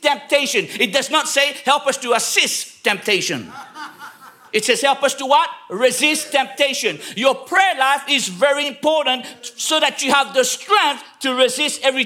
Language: English